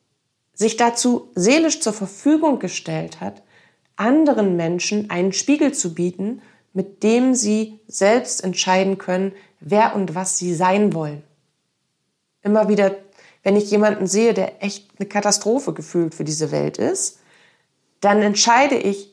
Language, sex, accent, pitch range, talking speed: German, female, German, 180-215 Hz, 135 wpm